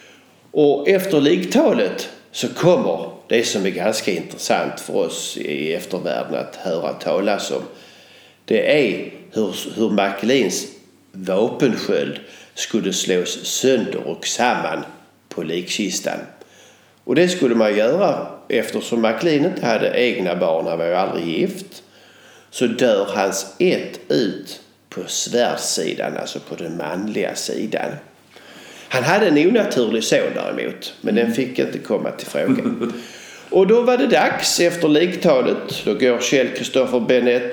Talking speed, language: 135 wpm, Swedish